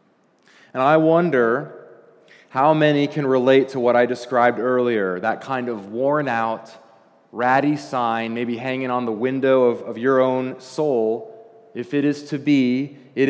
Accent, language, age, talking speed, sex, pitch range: American, English, 30-49, 155 wpm, male, 120-140 Hz